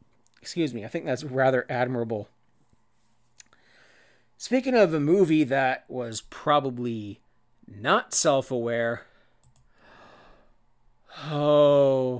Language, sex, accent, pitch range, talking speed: English, male, American, 125-170 Hz, 85 wpm